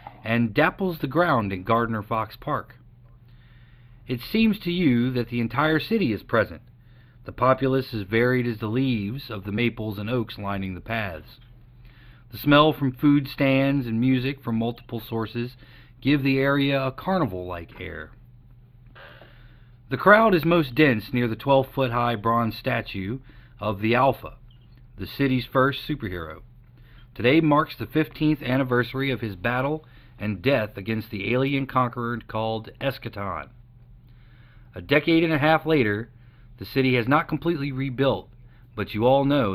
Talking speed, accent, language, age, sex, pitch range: 150 wpm, American, English, 40-59, male, 115-135 Hz